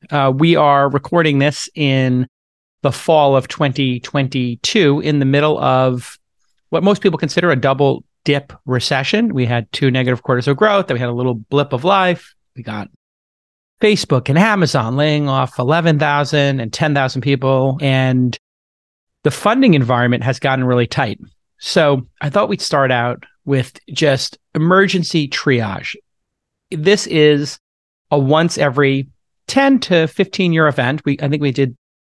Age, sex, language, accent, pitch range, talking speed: 40-59, male, English, American, 125-155 Hz, 150 wpm